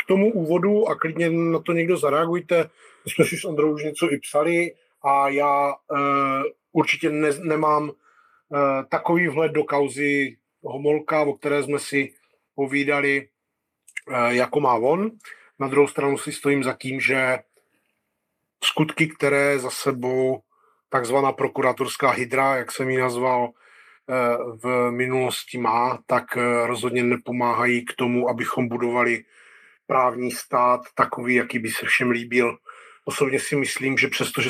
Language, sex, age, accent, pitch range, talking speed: Czech, male, 30-49, native, 125-150 Hz, 140 wpm